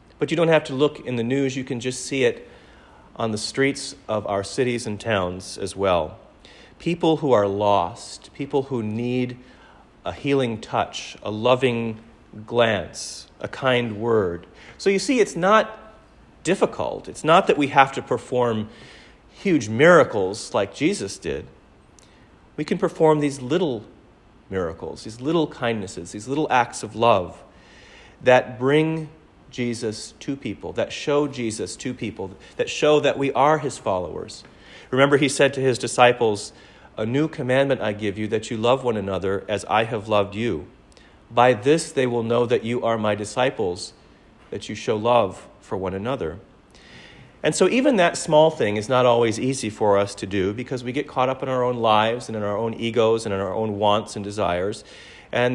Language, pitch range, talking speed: English, 105-140 Hz, 175 wpm